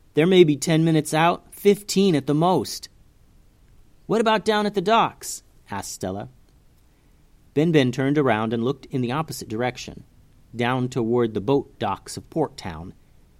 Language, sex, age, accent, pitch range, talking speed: English, male, 40-59, American, 120-175 Hz, 155 wpm